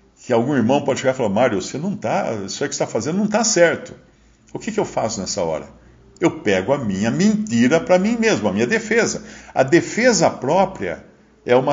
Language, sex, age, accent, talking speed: Portuguese, male, 50-69, Brazilian, 255 wpm